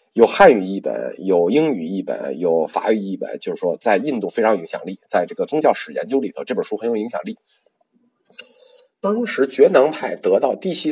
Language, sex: Chinese, male